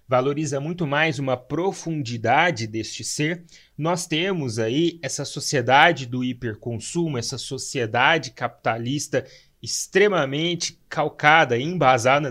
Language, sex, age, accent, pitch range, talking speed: Portuguese, male, 30-49, Brazilian, 125-170 Hz, 95 wpm